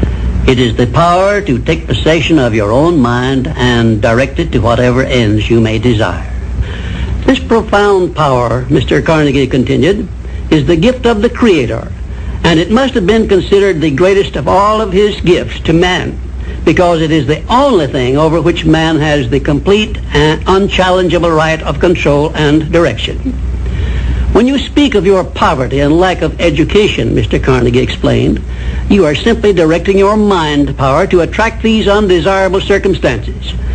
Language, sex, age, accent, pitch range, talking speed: English, male, 60-79, American, 125-195 Hz, 160 wpm